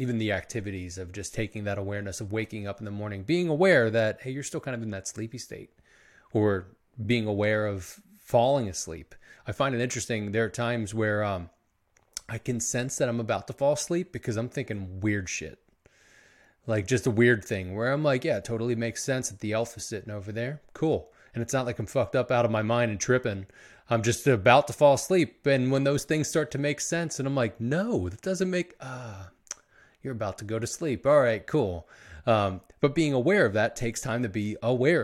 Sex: male